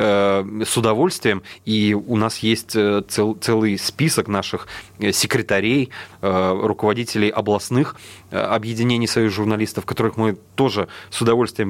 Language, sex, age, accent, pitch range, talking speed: Russian, male, 30-49, native, 105-125 Hz, 110 wpm